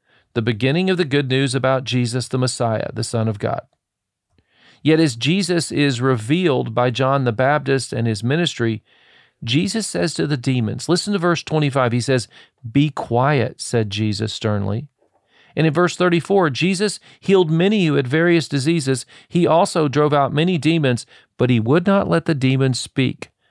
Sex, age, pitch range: male, 40-59, 120-155 Hz